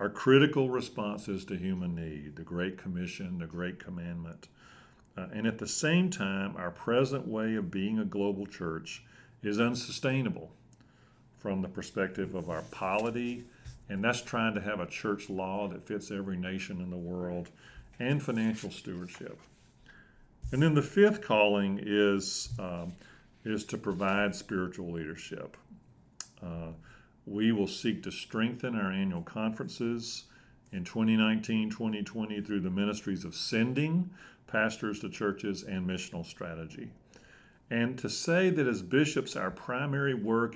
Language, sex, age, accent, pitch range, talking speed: English, male, 50-69, American, 95-125 Hz, 140 wpm